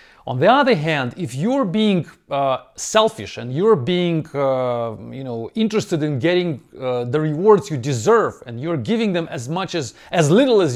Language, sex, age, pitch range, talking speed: English, male, 40-59, 140-200 Hz, 185 wpm